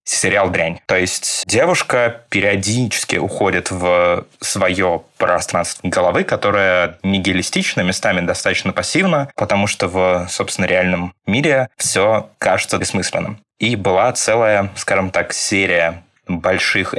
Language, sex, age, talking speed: Russian, male, 20-39, 115 wpm